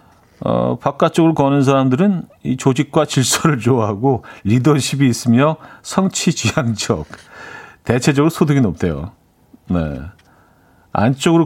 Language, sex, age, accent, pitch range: Korean, male, 40-59, native, 105-155 Hz